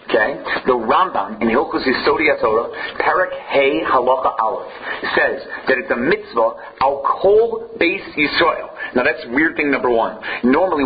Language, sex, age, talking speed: English, male, 40-59, 145 wpm